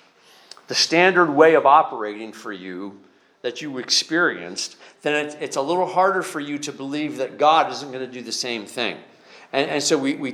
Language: English